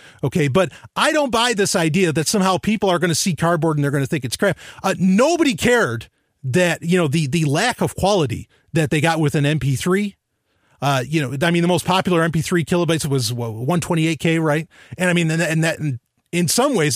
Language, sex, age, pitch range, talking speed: English, male, 30-49, 150-235 Hz, 225 wpm